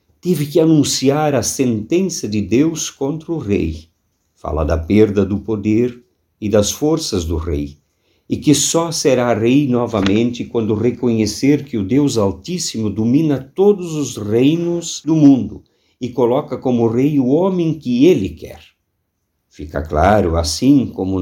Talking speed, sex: 145 wpm, male